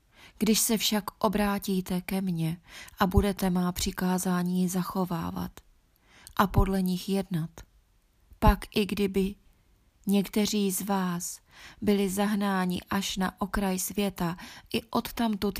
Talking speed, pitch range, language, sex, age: 110 wpm, 175-200 Hz, Czech, female, 20-39